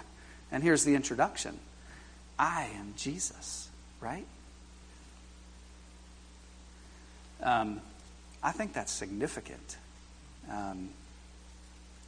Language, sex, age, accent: English, male, 40-59, American